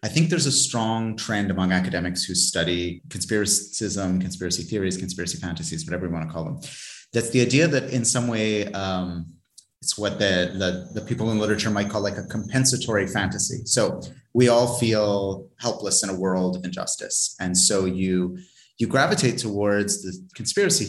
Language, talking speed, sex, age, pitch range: English, 170 wpm, male, 30-49, 95-120 Hz